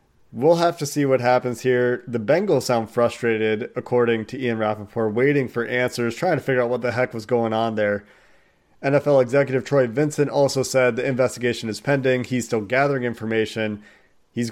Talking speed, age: 180 wpm, 30-49